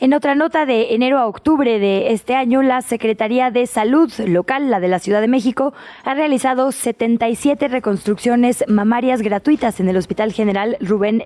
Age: 20-39